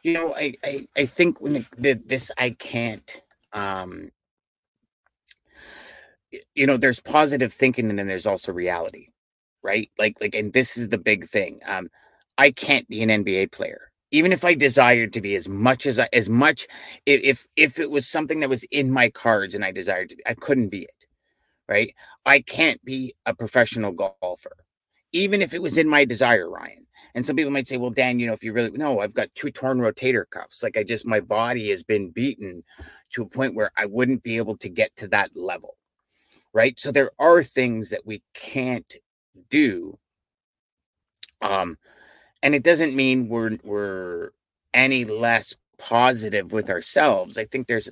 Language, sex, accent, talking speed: English, male, American, 185 wpm